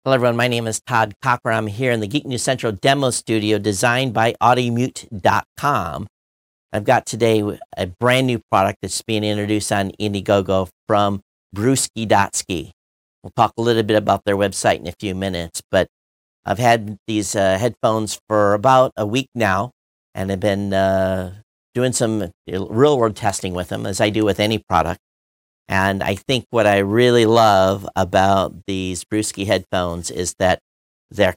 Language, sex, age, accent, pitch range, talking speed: English, male, 50-69, American, 95-115 Hz, 165 wpm